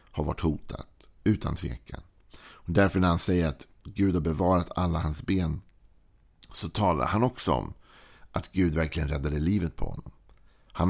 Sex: male